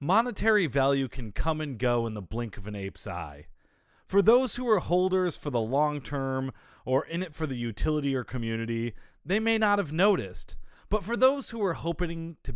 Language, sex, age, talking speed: English, male, 30-49, 200 wpm